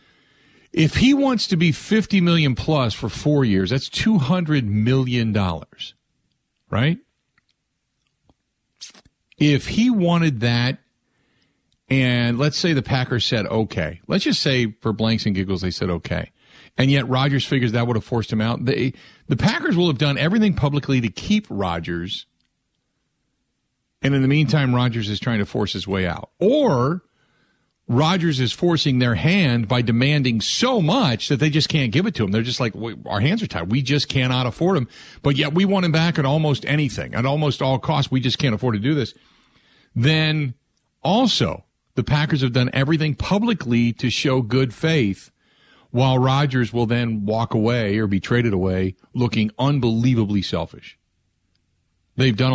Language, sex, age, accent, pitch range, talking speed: English, male, 50-69, American, 105-145 Hz, 165 wpm